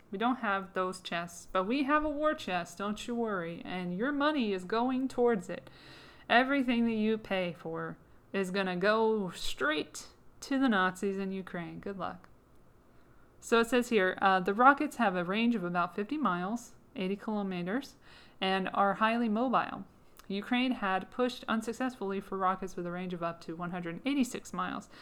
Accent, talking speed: American, 170 wpm